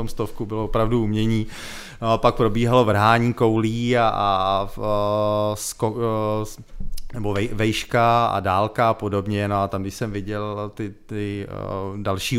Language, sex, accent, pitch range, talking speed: Czech, male, native, 105-125 Hz, 160 wpm